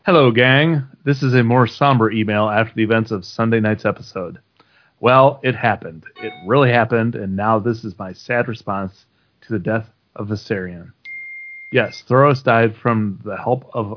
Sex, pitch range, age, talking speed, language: male, 110-135 Hz, 30-49, 170 wpm, English